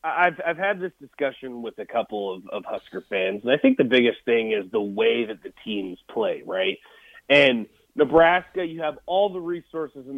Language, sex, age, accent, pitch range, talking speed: English, male, 30-49, American, 155-225 Hz, 200 wpm